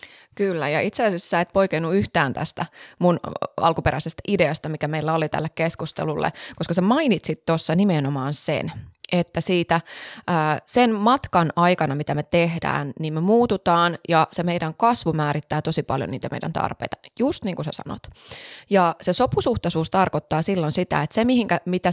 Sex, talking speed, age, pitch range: female, 160 wpm, 20-39, 160-195 Hz